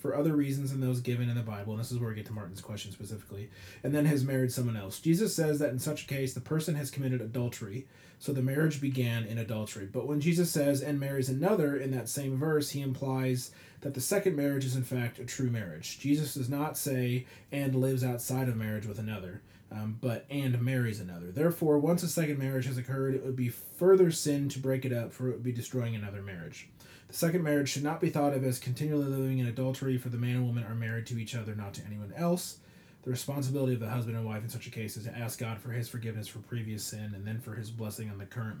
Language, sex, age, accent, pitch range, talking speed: English, male, 30-49, American, 110-140 Hz, 250 wpm